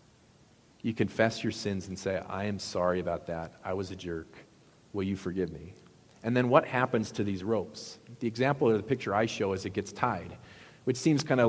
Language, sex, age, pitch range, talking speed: English, male, 40-59, 95-115 Hz, 215 wpm